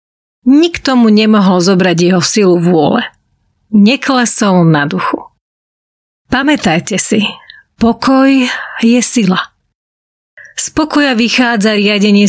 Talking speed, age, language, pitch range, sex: 90 wpm, 30-49, Slovak, 190-245 Hz, female